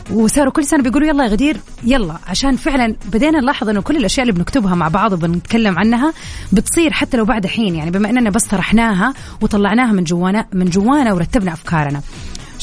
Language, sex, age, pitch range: Arabic, female, 30-49, 185-260 Hz